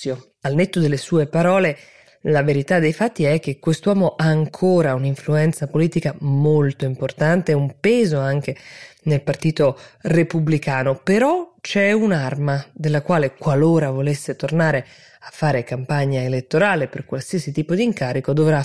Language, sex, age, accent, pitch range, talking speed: Italian, female, 20-39, native, 140-175 Hz, 135 wpm